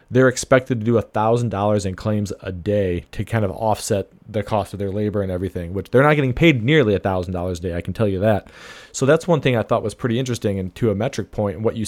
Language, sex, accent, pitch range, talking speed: English, male, American, 105-130 Hz, 260 wpm